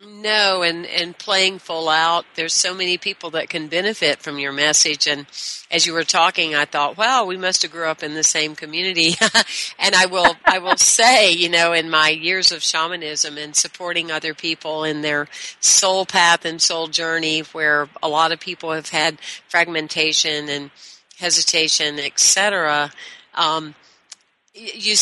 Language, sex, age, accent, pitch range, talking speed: English, female, 50-69, American, 160-185 Hz, 170 wpm